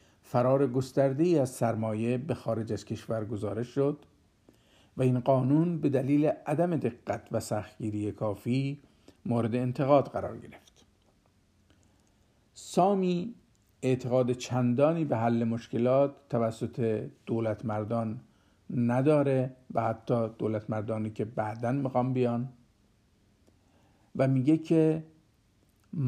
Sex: male